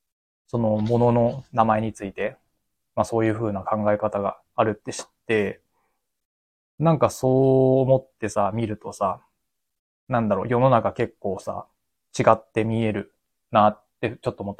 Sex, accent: male, native